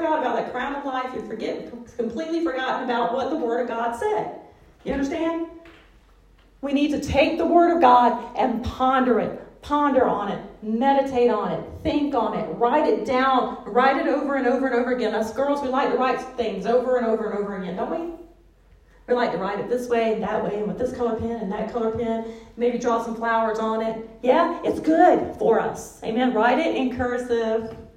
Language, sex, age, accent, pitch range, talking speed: English, female, 40-59, American, 225-265 Hz, 210 wpm